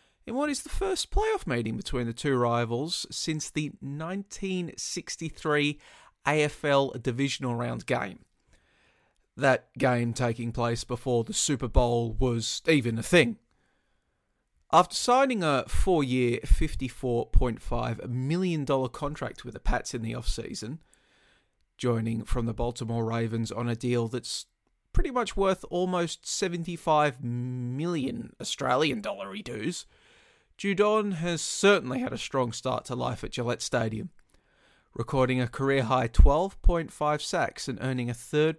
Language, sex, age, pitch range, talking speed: English, male, 30-49, 120-170 Hz, 125 wpm